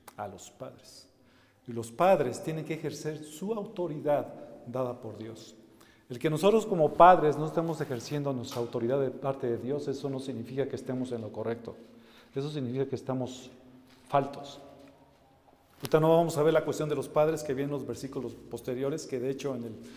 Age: 40-59